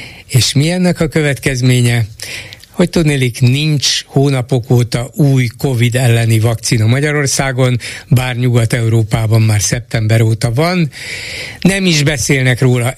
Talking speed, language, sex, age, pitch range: 110 wpm, Hungarian, male, 60-79, 115-140 Hz